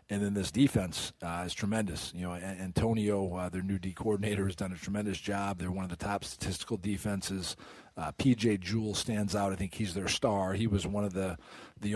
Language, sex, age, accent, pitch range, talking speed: English, male, 40-59, American, 95-110 Hz, 215 wpm